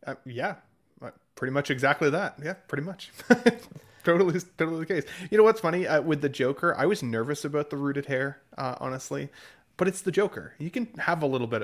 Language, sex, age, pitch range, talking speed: English, male, 20-39, 125-170 Hz, 205 wpm